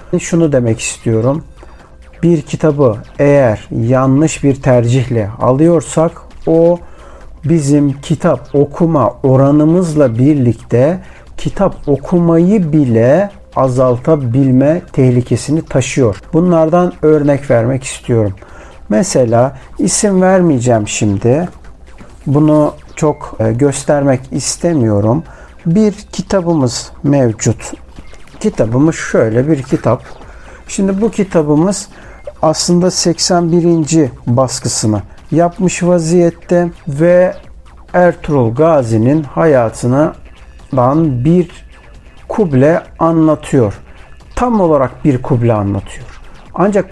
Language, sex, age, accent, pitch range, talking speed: Turkish, male, 60-79, native, 125-170 Hz, 80 wpm